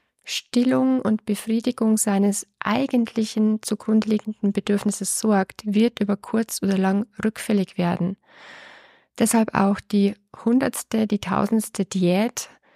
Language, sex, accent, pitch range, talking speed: German, female, German, 190-220 Hz, 105 wpm